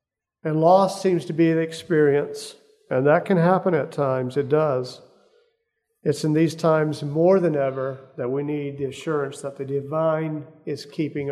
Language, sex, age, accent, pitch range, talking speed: English, male, 50-69, American, 150-195 Hz, 170 wpm